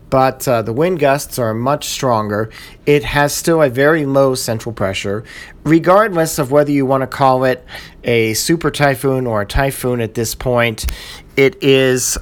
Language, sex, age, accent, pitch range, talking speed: English, male, 40-59, American, 120-145 Hz, 170 wpm